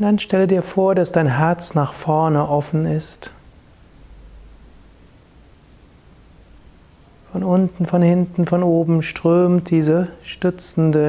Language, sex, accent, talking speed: German, male, German, 115 wpm